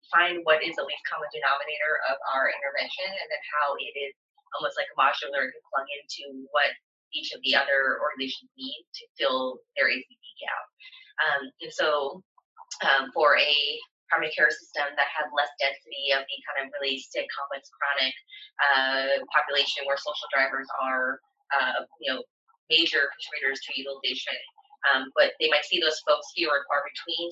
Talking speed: 175 wpm